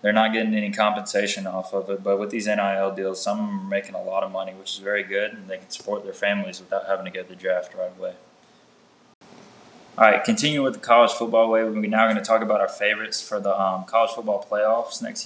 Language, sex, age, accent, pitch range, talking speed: English, male, 20-39, American, 100-115 Hz, 240 wpm